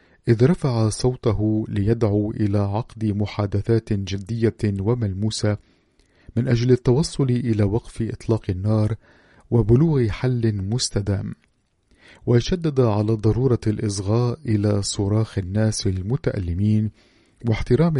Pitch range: 105-120 Hz